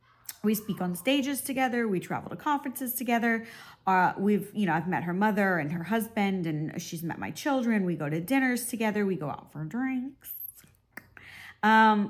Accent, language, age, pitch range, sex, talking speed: American, English, 30-49, 180-245 Hz, female, 185 wpm